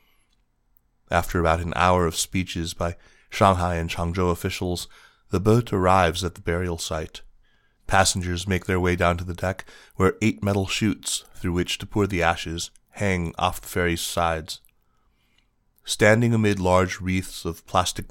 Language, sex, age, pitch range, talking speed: English, male, 30-49, 85-100 Hz, 155 wpm